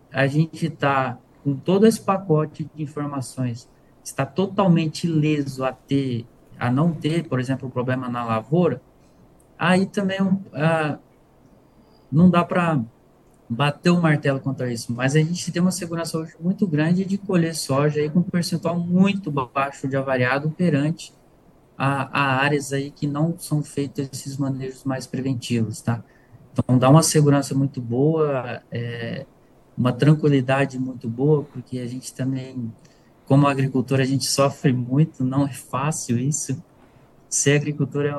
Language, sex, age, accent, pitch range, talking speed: Portuguese, male, 20-39, Brazilian, 130-155 Hz, 155 wpm